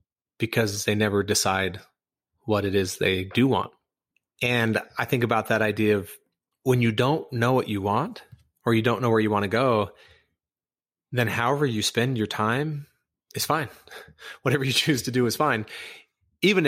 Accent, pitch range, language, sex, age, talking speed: American, 100-120 Hz, English, male, 30-49, 175 wpm